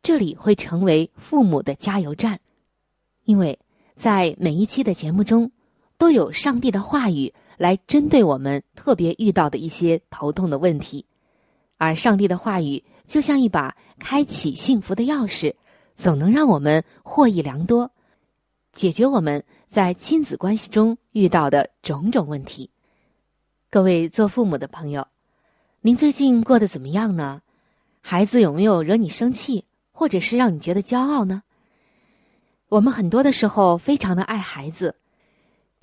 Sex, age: female, 20-39